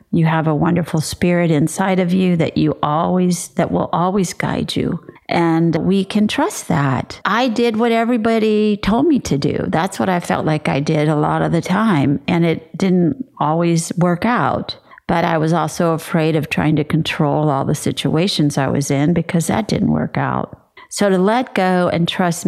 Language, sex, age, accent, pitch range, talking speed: English, female, 50-69, American, 160-200 Hz, 195 wpm